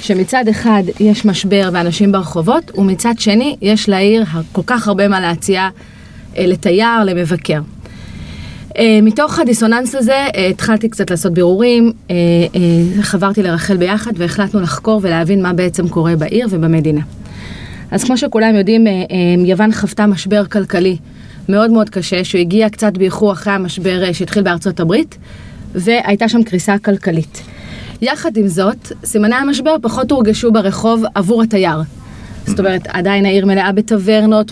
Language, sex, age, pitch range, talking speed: English, female, 30-49, 185-225 Hz, 130 wpm